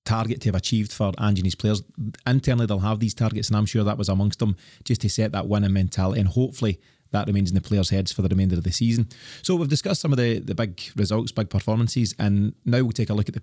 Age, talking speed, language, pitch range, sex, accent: 30-49, 260 wpm, English, 100-115 Hz, male, British